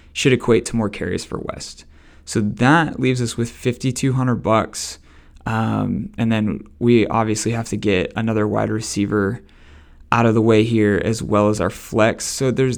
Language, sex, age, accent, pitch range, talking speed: English, male, 20-39, American, 105-120 Hz, 180 wpm